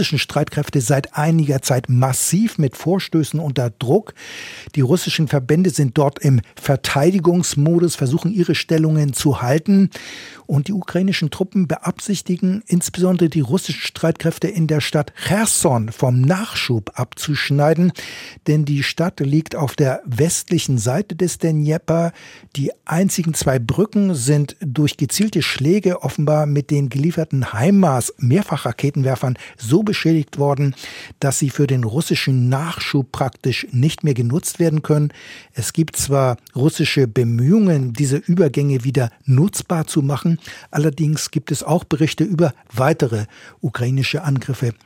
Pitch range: 135-175 Hz